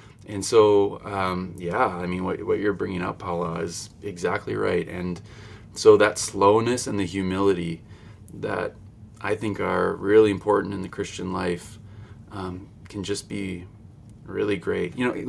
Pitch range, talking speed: 90-110 Hz, 155 wpm